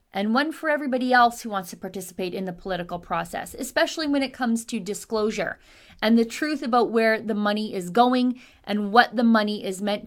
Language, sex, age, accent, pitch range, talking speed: English, female, 30-49, American, 210-275 Hz, 205 wpm